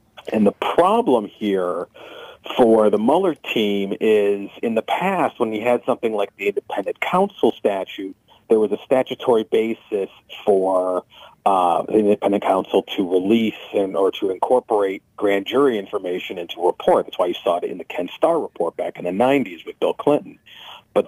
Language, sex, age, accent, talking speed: English, male, 40-59, American, 175 wpm